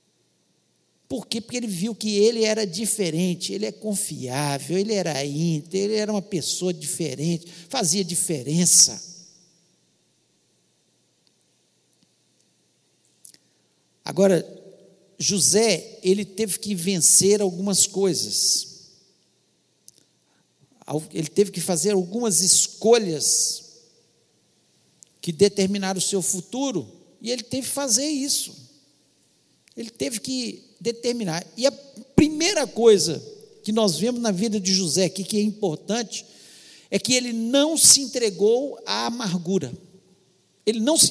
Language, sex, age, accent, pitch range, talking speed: Portuguese, male, 60-79, Brazilian, 185-230 Hz, 110 wpm